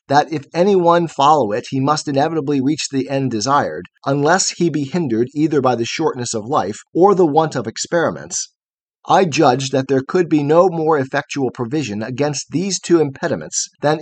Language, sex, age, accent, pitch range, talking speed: English, male, 40-59, American, 130-170 Hz, 185 wpm